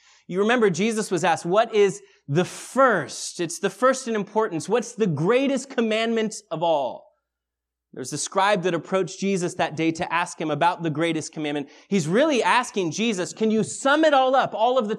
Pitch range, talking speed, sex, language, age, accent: 175-255 Hz, 190 wpm, male, English, 30-49, American